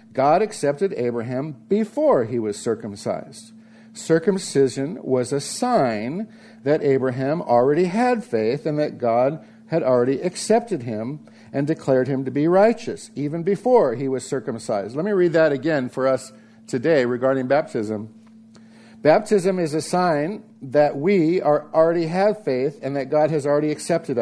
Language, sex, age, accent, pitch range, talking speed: English, male, 50-69, American, 130-200 Hz, 145 wpm